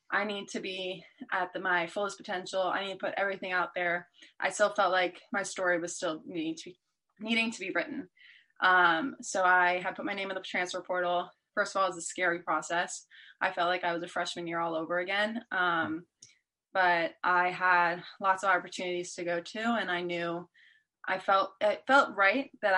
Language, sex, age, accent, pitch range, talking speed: English, female, 20-39, American, 175-200 Hz, 205 wpm